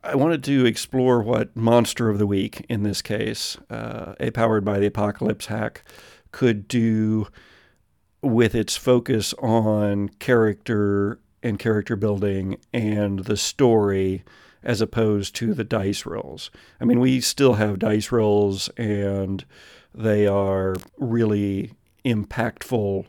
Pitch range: 100-115 Hz